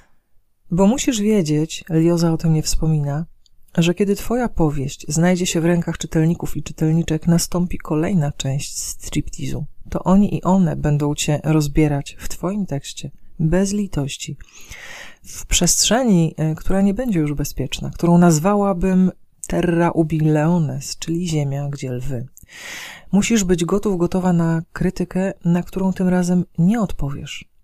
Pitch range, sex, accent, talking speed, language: 150-180 Hz, female, native, 135 wpm, Polish